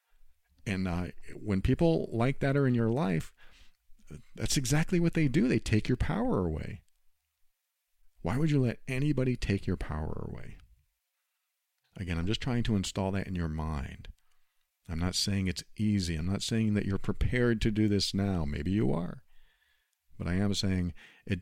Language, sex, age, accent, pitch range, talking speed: English, male, 50-69, American, 85-110 Hz, 175 wpm